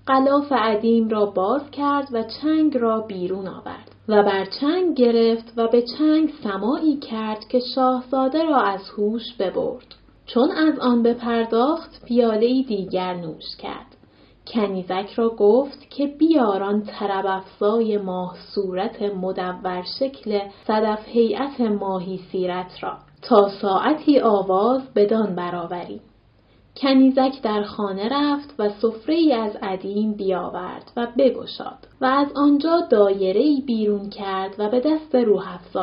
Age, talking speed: 10-29, 125 wpm